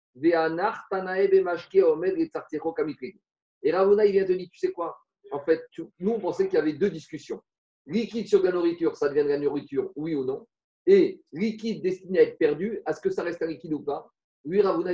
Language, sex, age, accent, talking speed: French, male, 40-59, French, 190 wpm